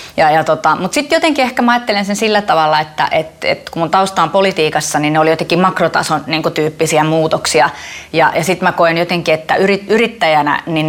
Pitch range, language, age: 155-185 Hz, Finnish, 30-49